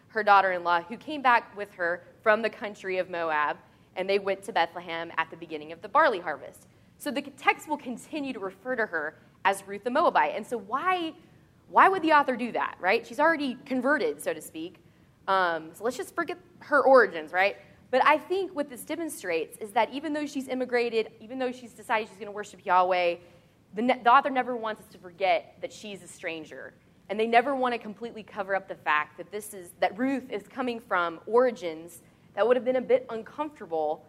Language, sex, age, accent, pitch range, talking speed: English, female, 20-39, American, 175-255 Hz, 210 wpm